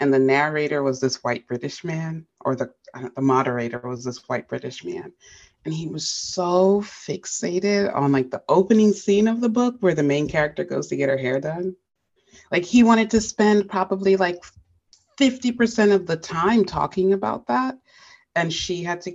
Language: English